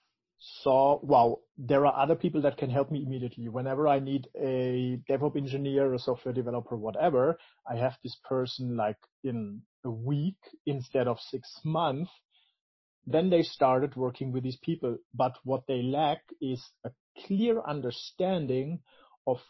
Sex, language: male, English